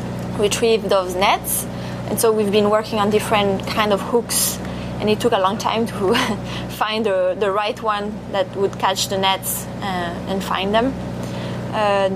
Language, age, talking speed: English, 20-39, 175 wpm